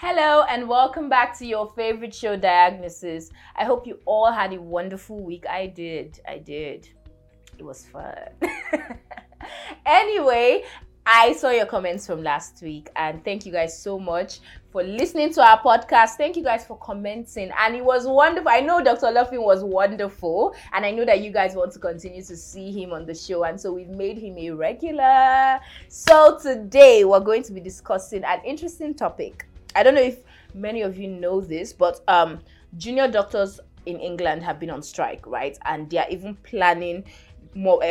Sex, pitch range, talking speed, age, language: female, 175-250 Hz, 185 wpm, 20-39, English